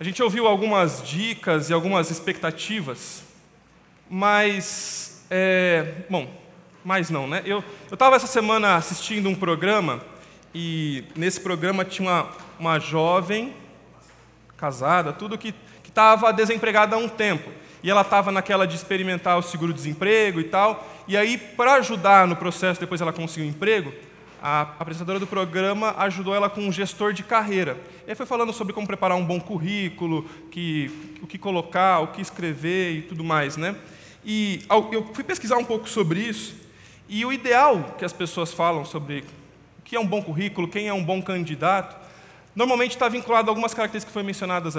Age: 20-39